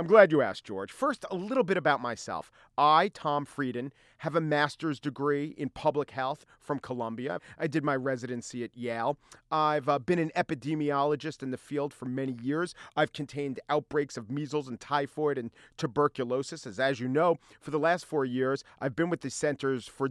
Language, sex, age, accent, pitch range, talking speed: English, male, 40-59, American, 130-165 Hz, 190 wpm